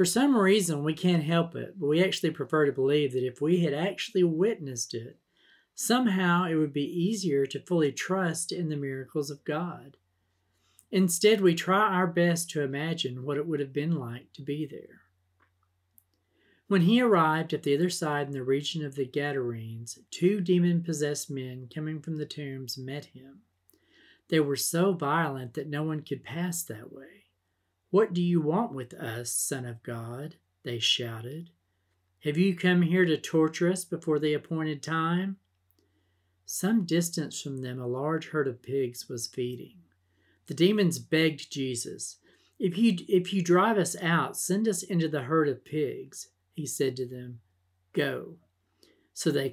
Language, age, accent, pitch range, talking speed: English, 40-59, American, 125-170 Hz, 170 wpm